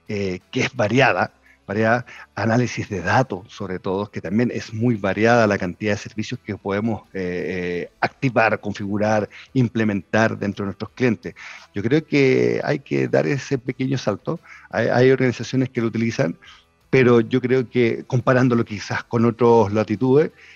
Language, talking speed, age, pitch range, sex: Spanish, 160 wpm, 40-59, 100-125 Hz, male